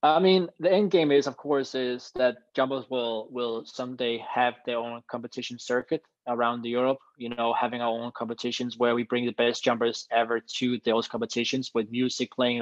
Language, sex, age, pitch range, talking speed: English, male, 20-39, 115-130 Hz, 195 wpm